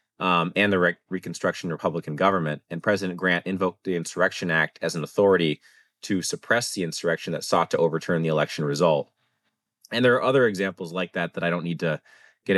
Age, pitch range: 30-49, 80-95 Hz